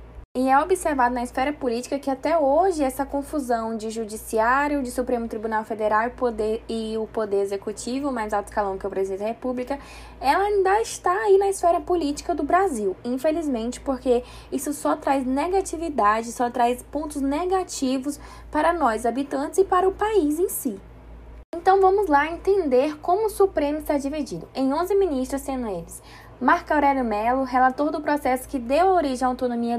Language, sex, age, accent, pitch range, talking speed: English, female, 10-29, Brazilian, 240-320 Hz, 170 wpm